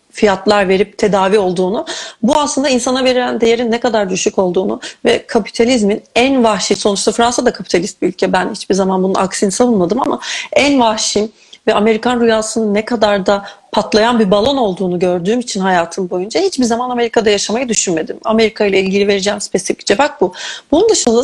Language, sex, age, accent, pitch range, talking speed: Turkish, female, 40-59, native, 200-250 Hz, 170 wpm